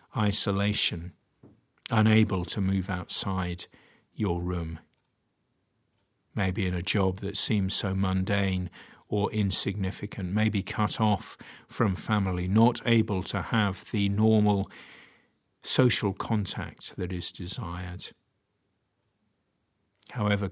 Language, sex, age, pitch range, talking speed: English, male, 50-69, 90-110 Hz, 100 wpm